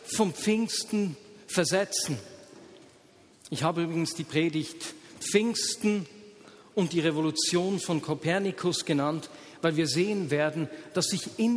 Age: 40-59